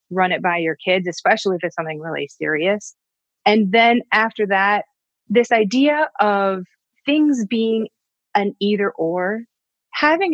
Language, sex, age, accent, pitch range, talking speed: English, female, 30-49, American, 180-225 Hz, 140 wpm